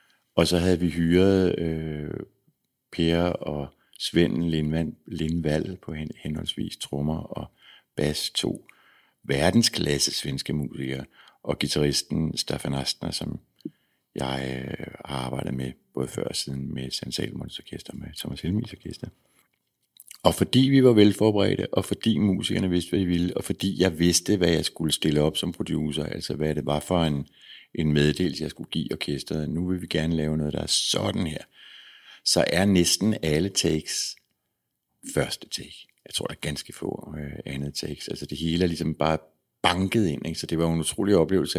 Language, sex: Danish, male